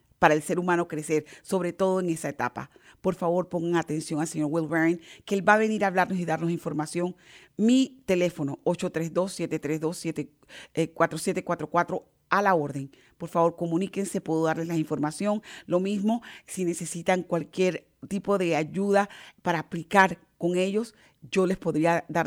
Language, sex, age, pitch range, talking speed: English, female, 40-59, 160-195 Hz, 150 wpm